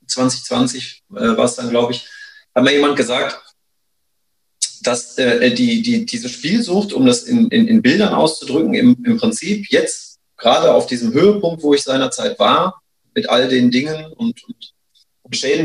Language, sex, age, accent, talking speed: German, male, 30-49, German, 165 wpm